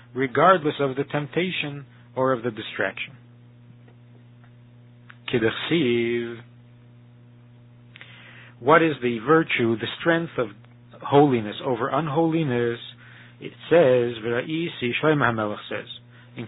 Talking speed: 80 wpm